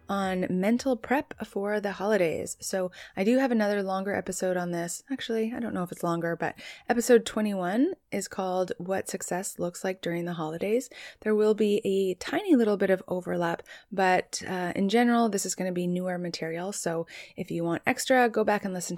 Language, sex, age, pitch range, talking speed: English, female, 20-39, 175-220 Hz, 200 wpm